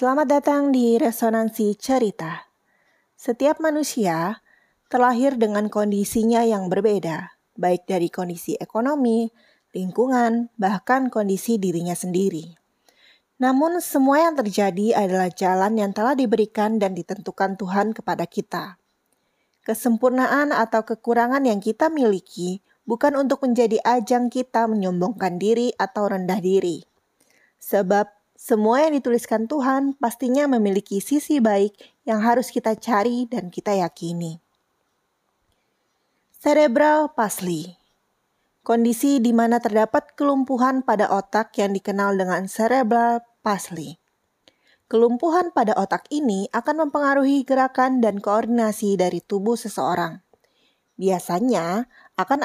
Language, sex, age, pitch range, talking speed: Indonesian, female, 20-39, 195-255 Hz, 110 wpm